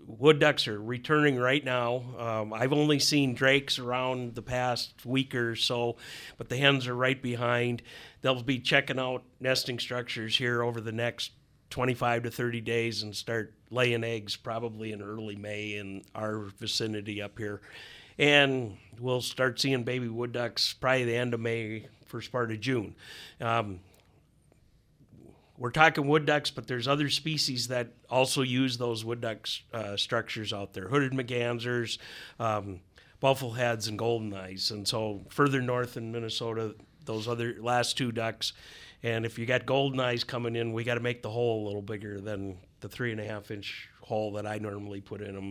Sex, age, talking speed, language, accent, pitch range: male, 50-69, 180 wpm, English, American, 110-130 Hz